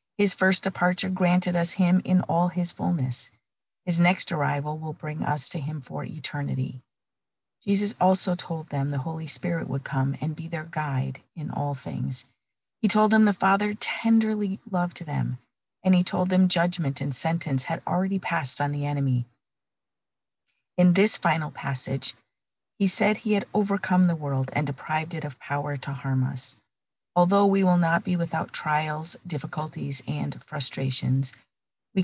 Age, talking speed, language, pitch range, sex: 40-59, 165 wpm, English, 140-185 Hz, female